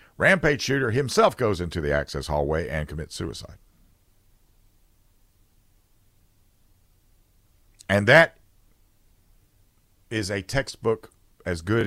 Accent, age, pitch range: American, 50-69, 85-115 Hz